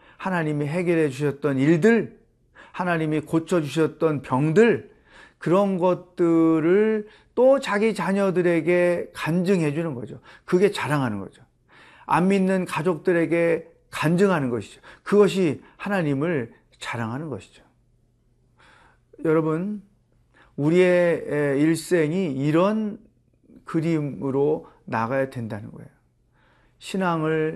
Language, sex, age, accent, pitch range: Korean, male, 40-59, native, 130-180 Hz